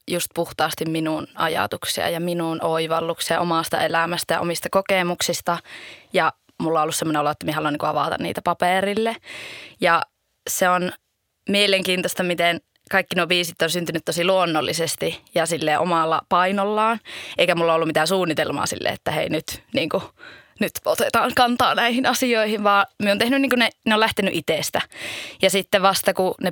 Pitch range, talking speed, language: 160-190 Hz, 165 wpm, Finnish